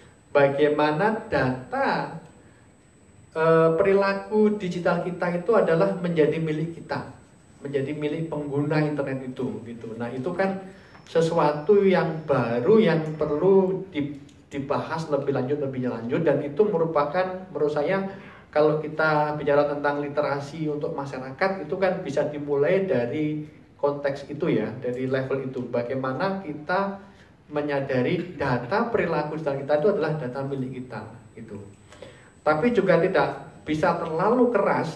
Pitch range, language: 140-180 Hz, Indonesian